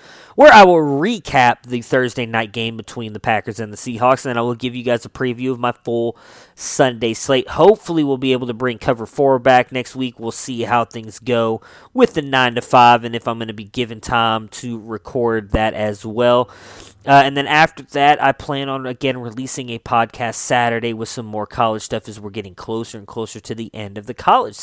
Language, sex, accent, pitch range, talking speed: English, male, American, 115-135 Hz, 220 wpm